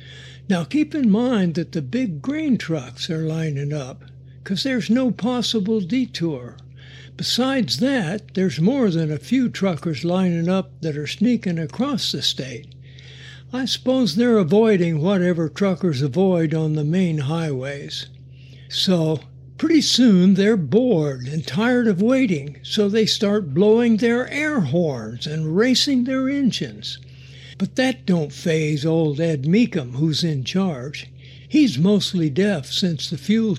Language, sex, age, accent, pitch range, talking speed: English, male, 60-79, American, 145-220 Hz, 145 wpm